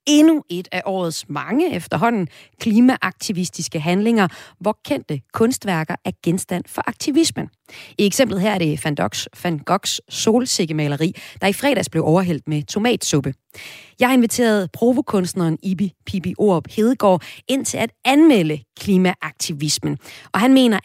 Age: 30-49